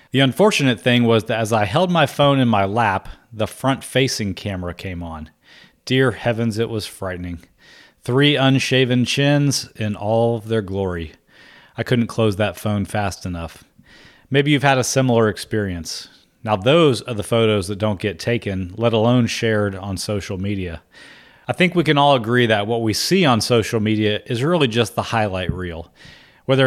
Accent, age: American, 30-49